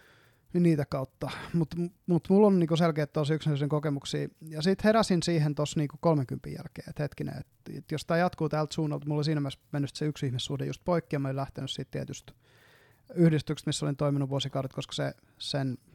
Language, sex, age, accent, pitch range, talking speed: Finnish, male, 20-39, native, 140-170 Hz, 180 wpm